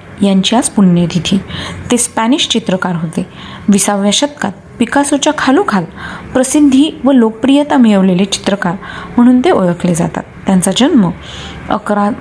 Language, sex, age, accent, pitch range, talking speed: Marathi, female, 30-49, native, 185-250 Hz, 120 wpm